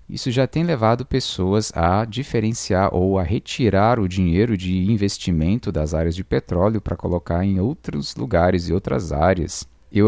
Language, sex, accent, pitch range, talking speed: Portuguese, male, Brazilian, 85-110 Hz, 160 wpm